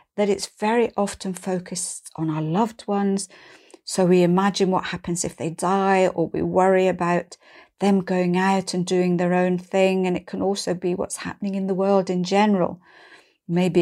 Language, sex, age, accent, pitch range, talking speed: English, female, 50-69, British, 175-200 Hz, 180 wpm